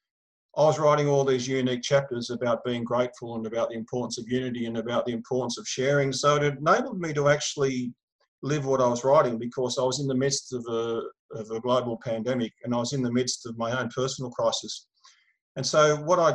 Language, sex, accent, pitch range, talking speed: English, male, Australian, 120-135 Hz, 215 wpm